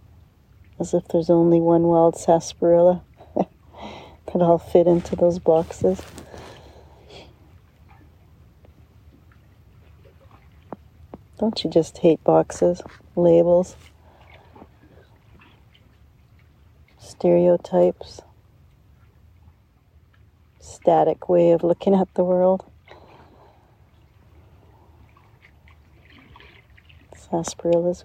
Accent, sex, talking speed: American, female, 60 wpm